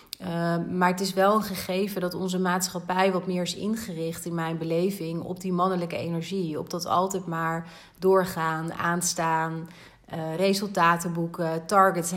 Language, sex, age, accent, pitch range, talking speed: Dutch, female, 30-49, Dutch, 165-190 Hz, 155 wpm